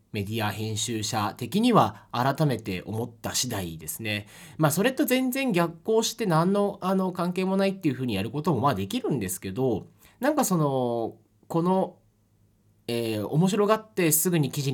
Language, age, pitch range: Japanese, 30-49, 105-170 Hz